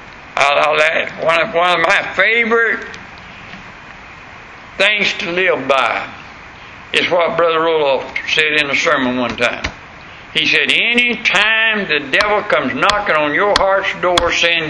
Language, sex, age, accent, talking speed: English, male, 60-79, American, 140 wpm